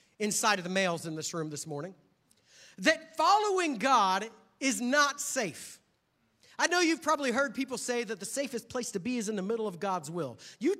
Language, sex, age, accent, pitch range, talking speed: English, male, 40-59, American, 185-275 Hz, 200 wpm